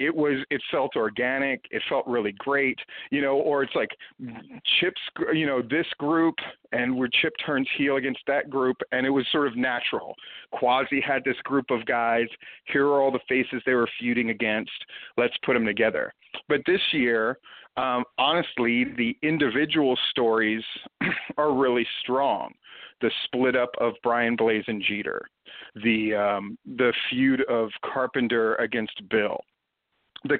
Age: 40-59